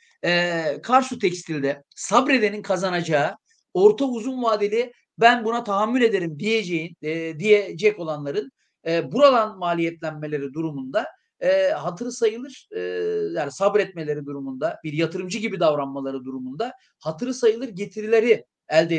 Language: Turkish